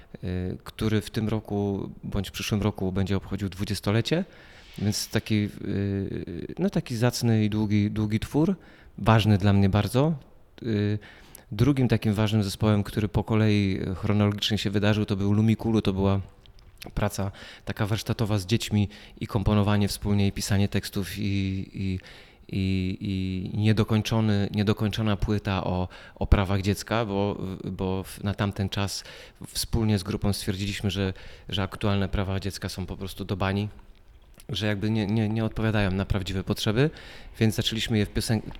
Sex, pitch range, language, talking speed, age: male, 100-110 Hz, Polish, 145 wpm, 30-49